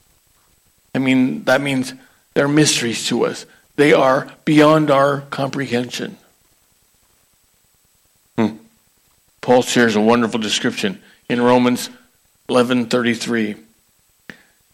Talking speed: 90 wpm